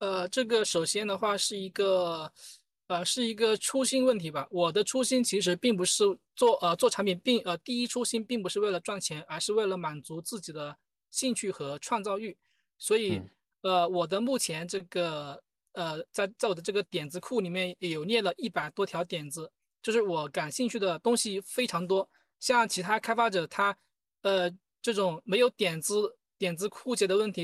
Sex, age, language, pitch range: male, 20-39, Chinese, 175-225 Hz